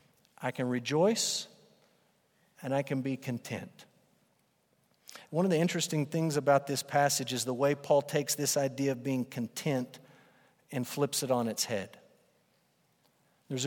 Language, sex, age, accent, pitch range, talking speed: English, male, 50-69, American, 135-175 Hz, 145 wpm